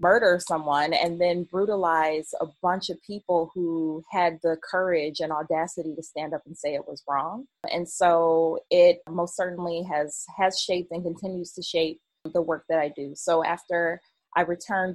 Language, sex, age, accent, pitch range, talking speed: English, female, 20-39, American, 160-180 Hz, 175 wpm